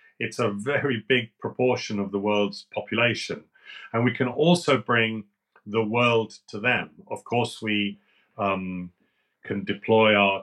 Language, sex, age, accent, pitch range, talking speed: English, male, 40-59, British, 100-120 Hz, 145 wpm